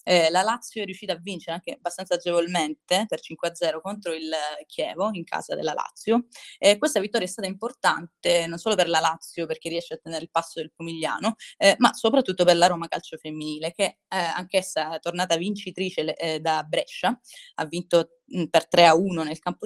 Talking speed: 195 wpm